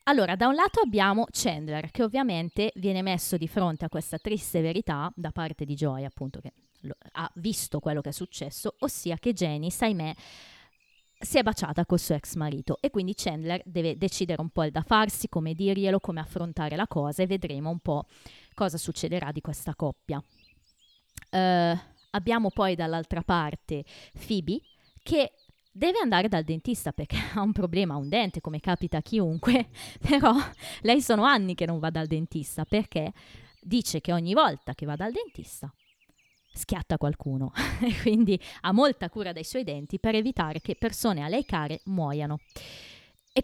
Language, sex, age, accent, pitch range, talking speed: Italian, female, 20-39, native, 160-215 Hz, 170 wpm